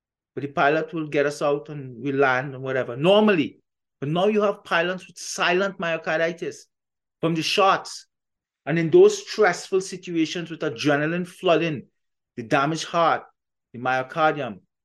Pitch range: 140-180 Hz